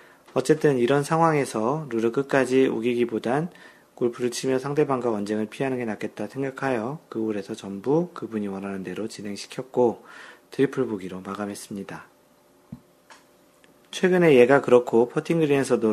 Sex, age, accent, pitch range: male, 40-59, native, 110-135 Hz